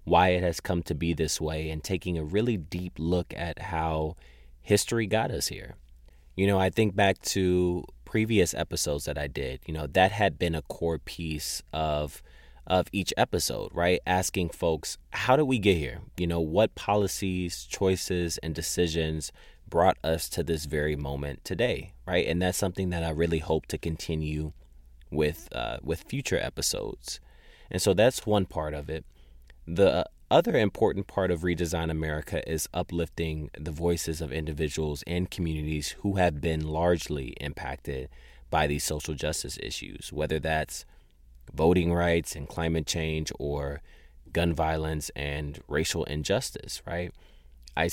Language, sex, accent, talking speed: English, male, American, 160 wpm